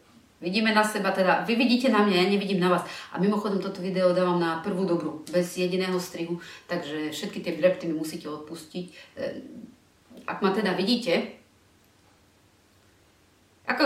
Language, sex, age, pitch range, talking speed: Slovak, female, 30-49, 155-195 Hz, 150 wpm